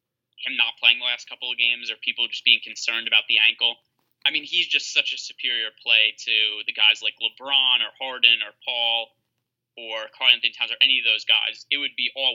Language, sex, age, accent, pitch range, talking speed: English, male, 20-39, American, 120-150 Hz, 225 wpm